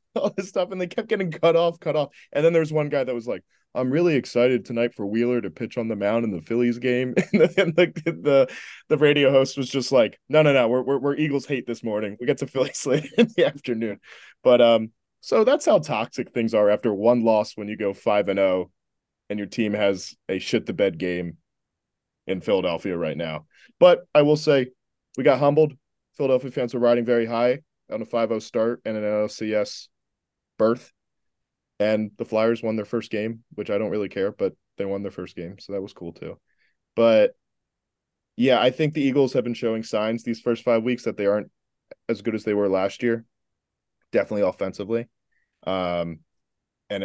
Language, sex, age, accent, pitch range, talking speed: English, male, 20-39, American, 105-145 Hz, 210 wpm